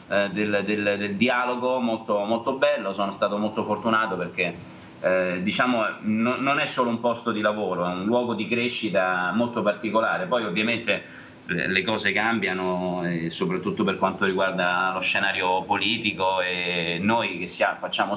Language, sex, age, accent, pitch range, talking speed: Italian, male, 30-49, native, 90-110 Hz, 150 wpm